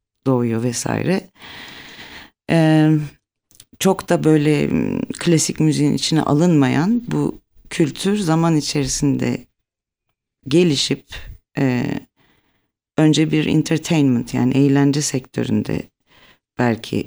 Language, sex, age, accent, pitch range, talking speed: Turkish, female, 50-69, native, 130-155 Hz, 80 wpm